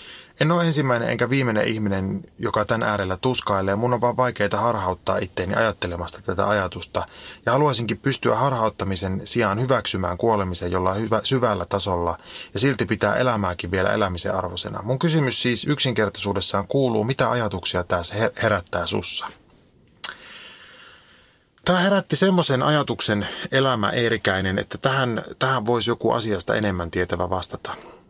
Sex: male